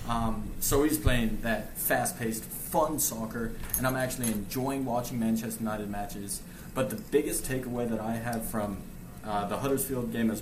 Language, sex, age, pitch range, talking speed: English, male, 20-39, 110-125 Hz, 165 wpm